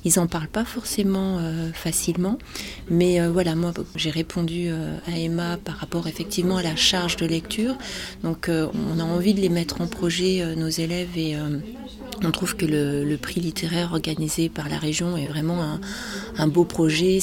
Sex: female